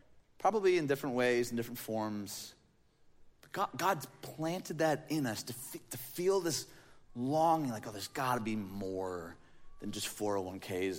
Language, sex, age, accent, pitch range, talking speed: English, male, 30-49, American, 125-200 Hz, 160 wpm